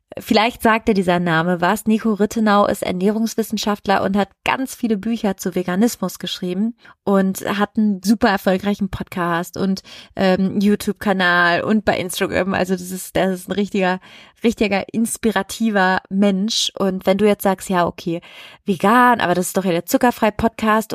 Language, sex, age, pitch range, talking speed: German, female, 30-49, 190-225 Hz, 160 wpm